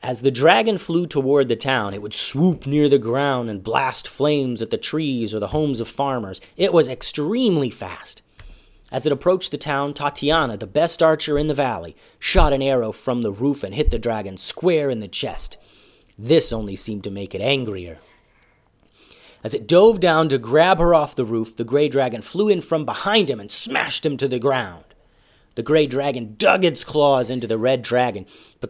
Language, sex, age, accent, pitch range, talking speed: English, male, 30-49, American, 115-150 Hz, 200 wpm